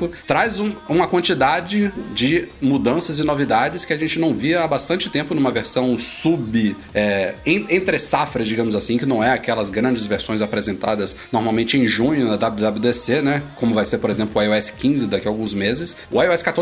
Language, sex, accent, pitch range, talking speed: Portuguese, male, Brazilian, 115-155 Hz, 190 wpm